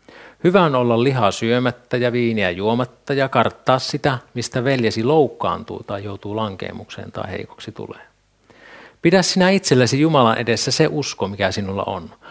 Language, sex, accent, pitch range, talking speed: Finnish, male, native, 105-135 Hz, 140 wpm